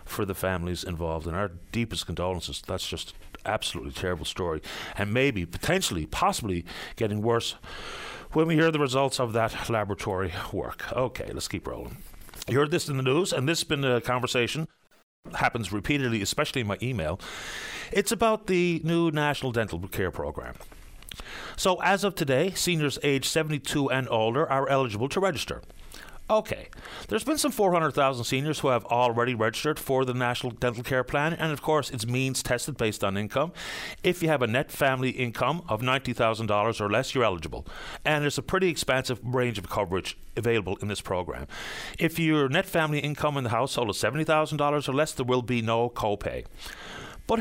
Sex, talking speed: male, 175 wpm